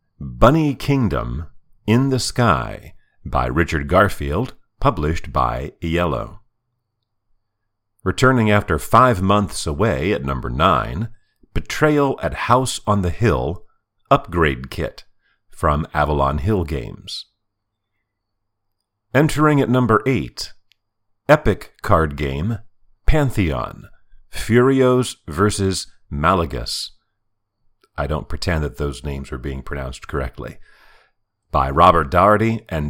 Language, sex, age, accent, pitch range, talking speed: English, male, 50-69, American, 75-110 Hz, 100 wpm